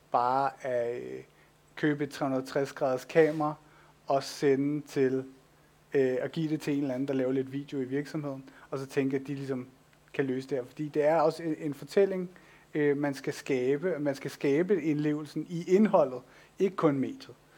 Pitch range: 140-165 Hz